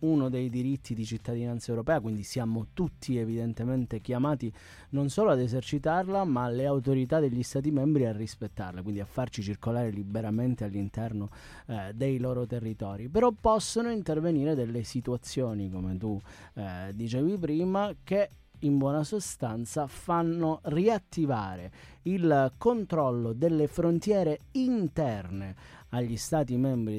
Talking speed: 125 wpm